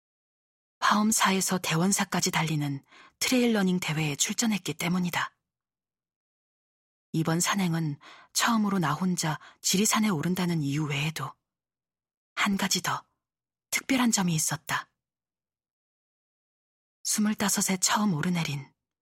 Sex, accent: female, native